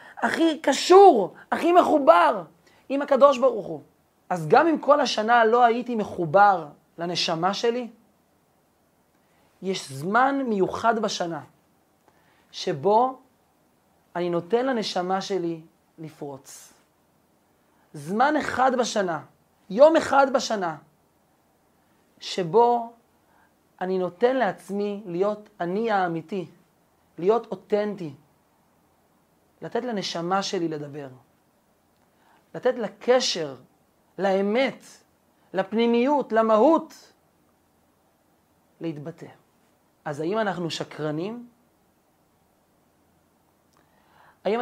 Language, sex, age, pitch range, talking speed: Hebrew, male, 30-49, 165-235 Hz, 80 wpm